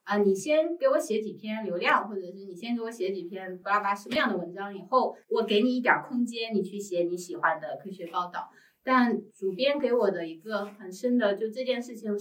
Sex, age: female, 20-39